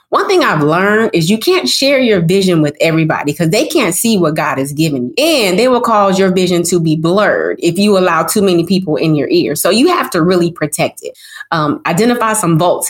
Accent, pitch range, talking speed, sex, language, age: American, 160-210 Hz, 230 wpm, female, English, 20-39